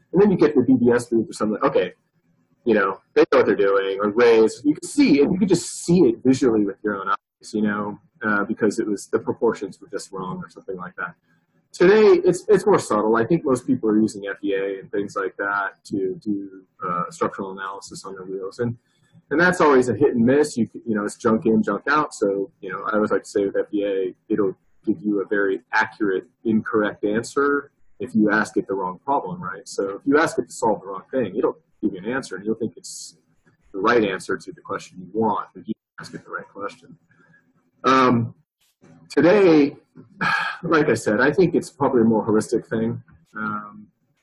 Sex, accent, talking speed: male, American, 225 wpm